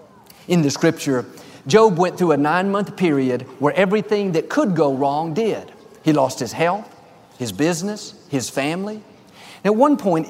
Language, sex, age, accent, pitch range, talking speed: English, male, 50-69, American, 155-220 Hz, 165 wpm